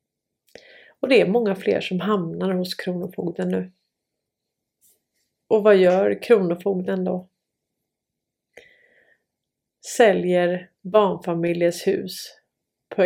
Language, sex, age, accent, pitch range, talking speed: Swedish, female, 30-49, native, 170-200 Hz, 85 wpm